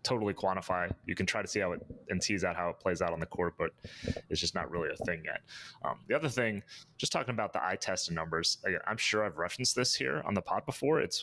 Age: 30-49